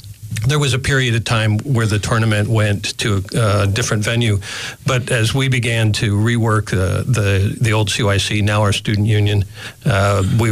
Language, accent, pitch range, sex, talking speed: English, American, 105-125 Hz, male, 185 wpm